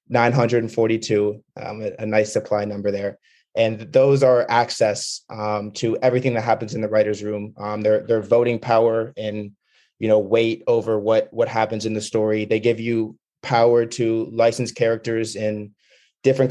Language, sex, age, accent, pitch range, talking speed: English, male, 20-39, American, 110-120 Hz, 180 wpm